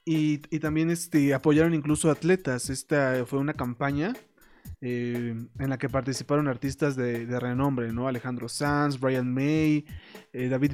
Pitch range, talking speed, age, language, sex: 125-150 Hz, 150 wpm, 20-39, Spanish, male